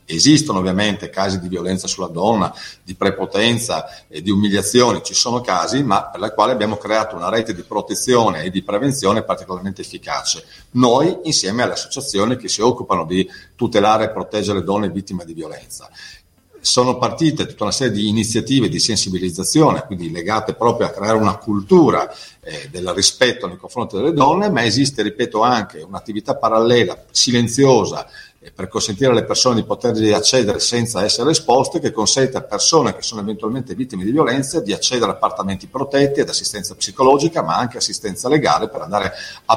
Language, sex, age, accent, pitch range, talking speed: Italian, male, 50-69, native, 95-120 Hz, 165 wpm